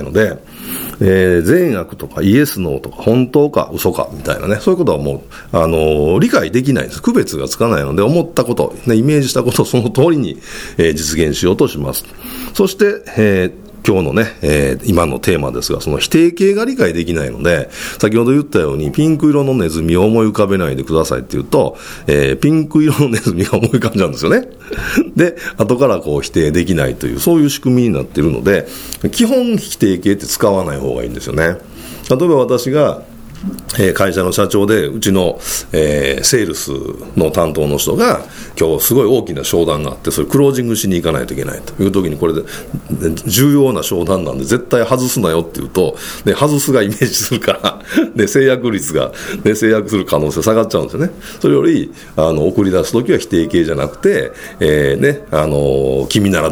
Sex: male